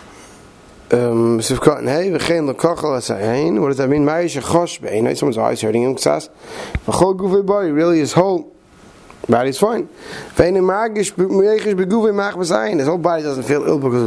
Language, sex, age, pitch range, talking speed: English, male, 30-49, 145-200 Hz, 110 wpm